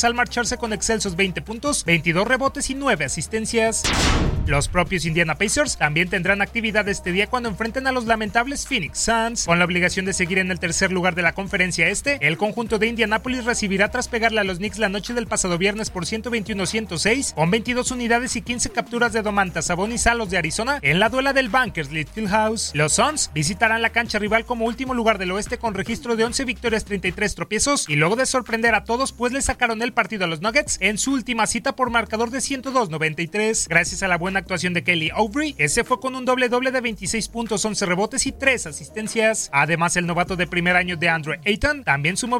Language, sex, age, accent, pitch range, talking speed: Spanish, male, 30-49, Mexican, 185-245 Hz, 210 wpm